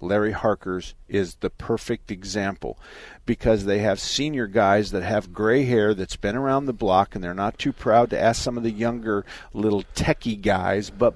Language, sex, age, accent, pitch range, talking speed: English, male, 50-69, American, 105-130 Hz, 190 wpm